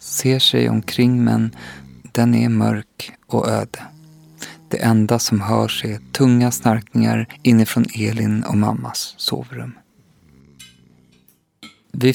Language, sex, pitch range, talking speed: Swedish, male, 110-130 Hz, 115 wpm